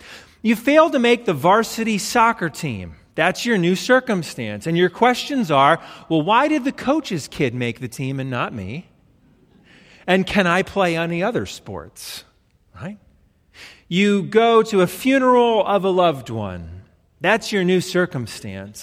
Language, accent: English, American